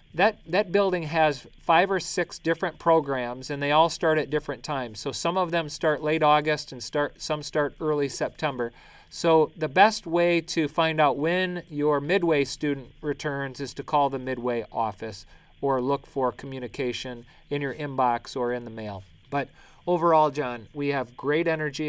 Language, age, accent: English, 40-59, American